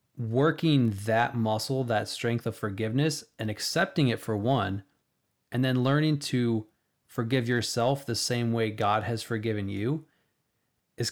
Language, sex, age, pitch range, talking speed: English, male, 20-39, 110-125 Hz, 140 wpm